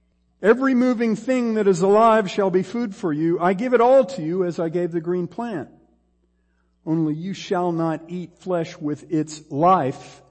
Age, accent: 50-69, American